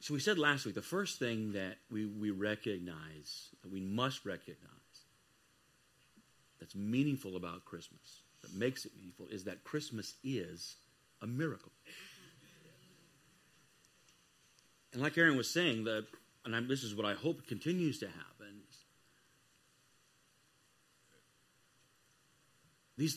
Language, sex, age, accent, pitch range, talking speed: English, male, 50-69, American, 105-145 Hz, 115 wpm